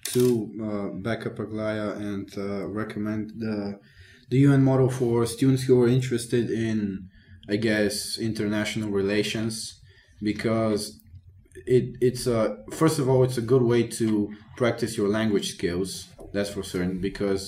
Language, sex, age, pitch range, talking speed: Bulgarian, male, 20-39, 100-120 Hz, 145 wpm